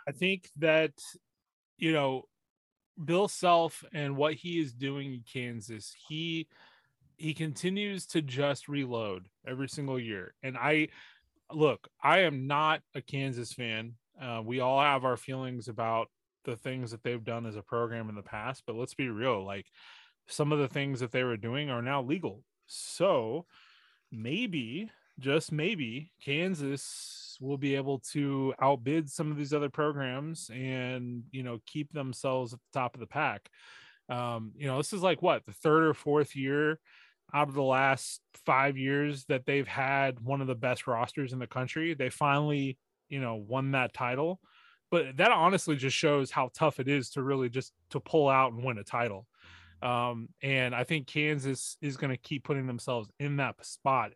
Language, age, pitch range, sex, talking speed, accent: English, 20-39, 125-150 Hz, male, 180 wpm, American